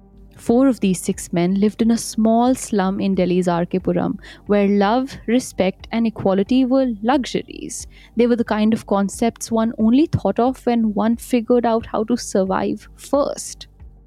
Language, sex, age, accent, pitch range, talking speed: English, female, 20-39, Indian, 190-240 Hz, 160 wpm